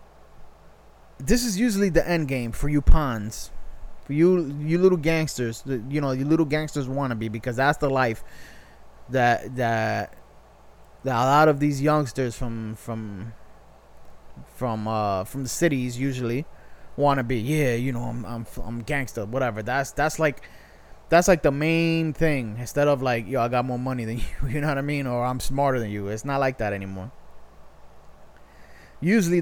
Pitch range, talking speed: 115-150 Hz, 175 wpm